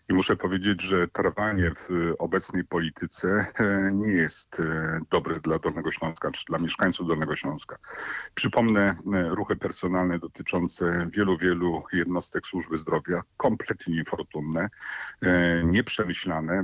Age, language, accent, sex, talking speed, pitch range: 50-69, Polish, native, male, 110 wpm, 85-100 Hz